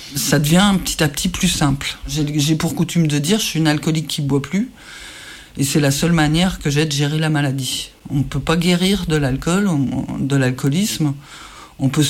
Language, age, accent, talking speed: French, 50-69, French, 215 wpm